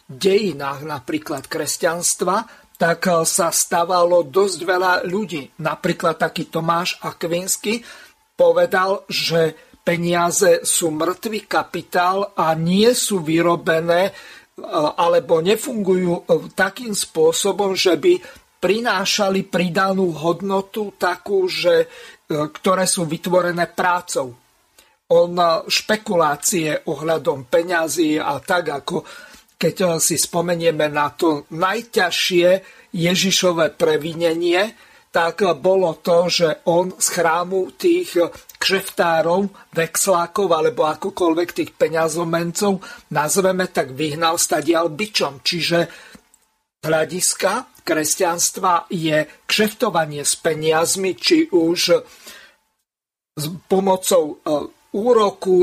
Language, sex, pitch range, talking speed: Slovak, male, 170-215 Hz, 90 wpm